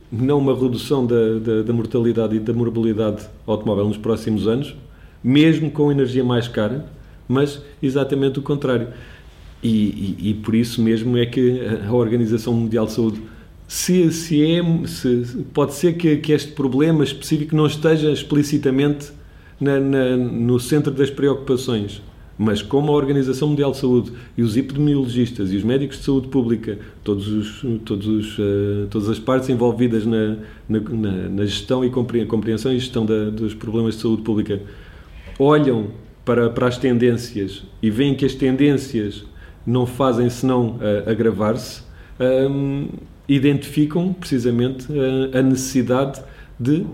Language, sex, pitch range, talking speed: Portuguese, male, 110-140 Hz, 150 wpm